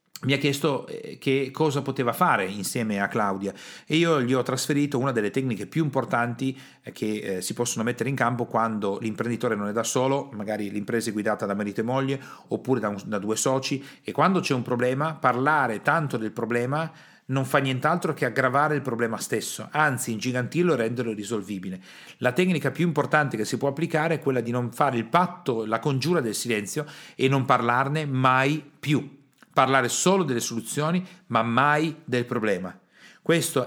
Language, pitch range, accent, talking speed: Italian, 115-145 Hz, native, 180 wpm